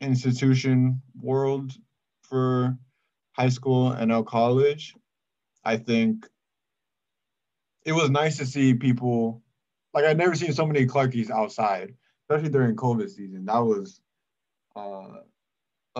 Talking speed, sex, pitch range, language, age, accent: 115 wpm, male, 115-145 Hz, English, 20-39, American